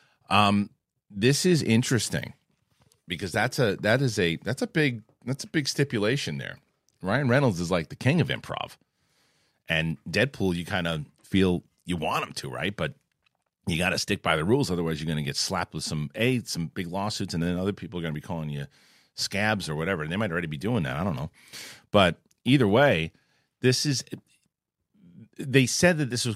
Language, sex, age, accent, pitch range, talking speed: English, male, 40-59, American, 85-120 Hz, 205 wpm